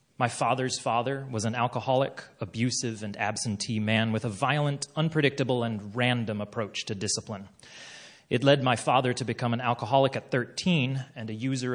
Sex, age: male, 30-49